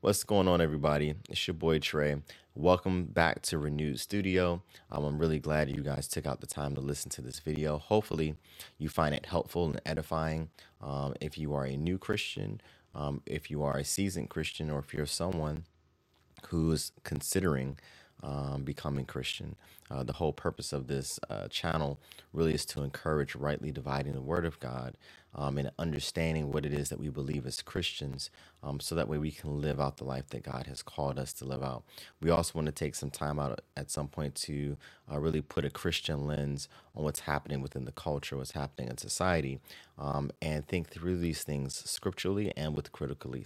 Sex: male